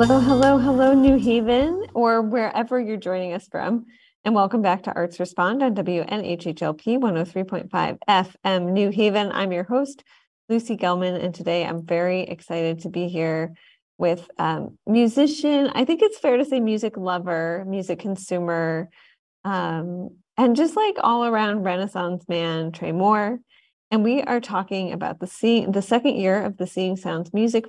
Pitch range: 180-235 Hz